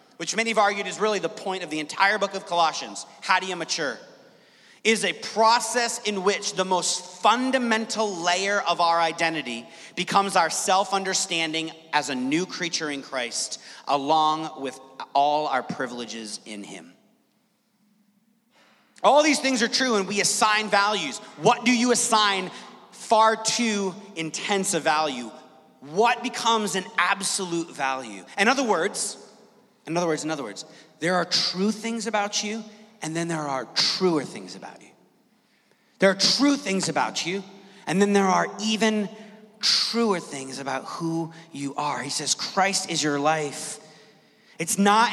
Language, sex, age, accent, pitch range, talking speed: English, male, 30-49, American, 160-210 Hz, 155 wpm